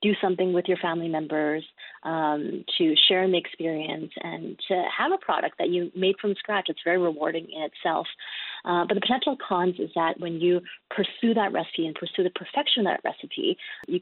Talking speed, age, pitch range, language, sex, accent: 195 wpm, 30-49, 170-215 Hz, English, female, American